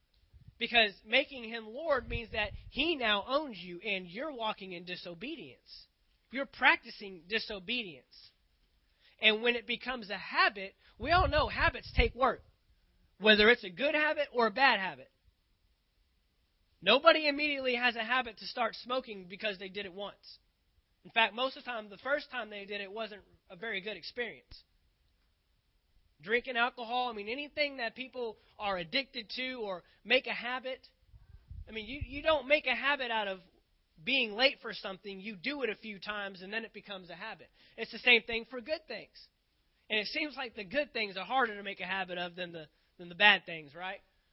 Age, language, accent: 20-39, English, American